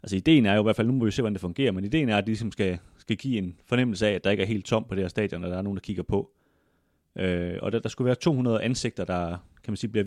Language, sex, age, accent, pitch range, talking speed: Danish, male, 30-49, native, 95-115 Hz, 335 wpm